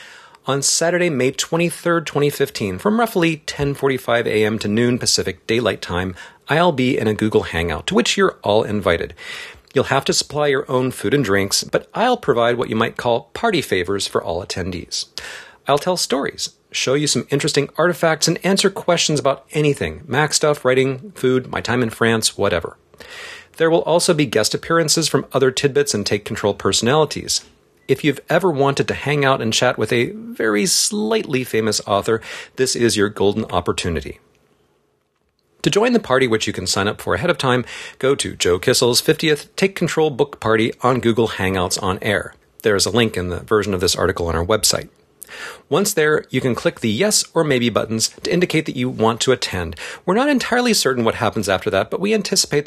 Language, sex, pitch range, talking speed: English, male, 110-160 Hz, 190 wpm